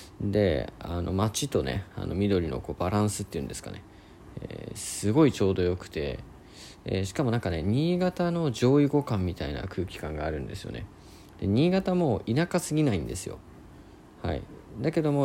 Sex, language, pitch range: male, Japanese, 85-115 Hz